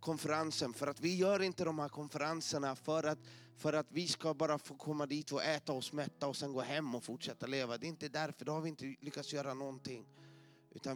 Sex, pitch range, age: male, 130-170 Hz, 30-49